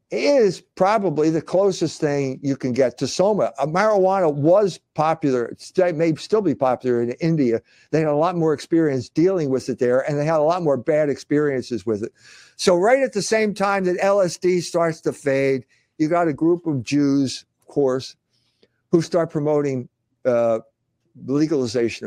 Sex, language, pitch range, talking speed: male, English, 130-170 Hz, 175 wpm